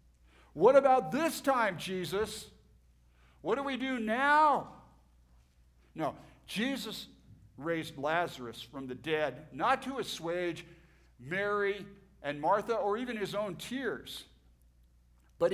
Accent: American